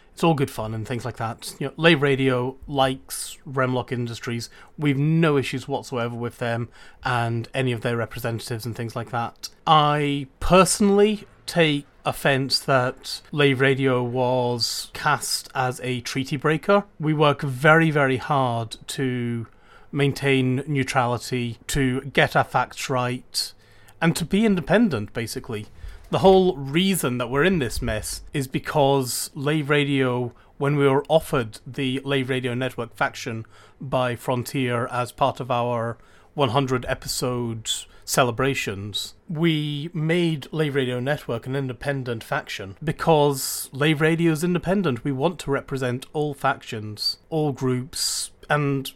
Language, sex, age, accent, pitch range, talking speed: English, male, 30-49, British, 120-150 Hz, 135 wpm